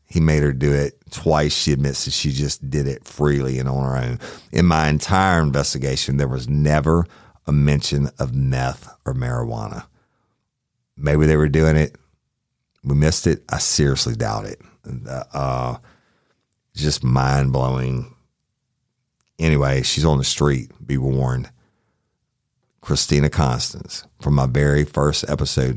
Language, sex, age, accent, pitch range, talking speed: English, male, 50-69, American, 70-90 Hz, 140 wpm